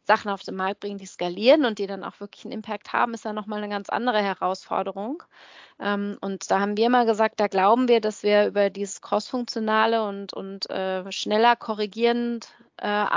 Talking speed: 195 wpm